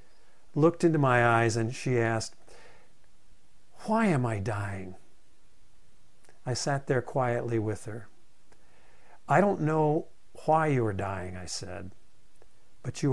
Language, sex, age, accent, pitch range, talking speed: English, male, 50-69, American, 110-155 Hz, 130 wpm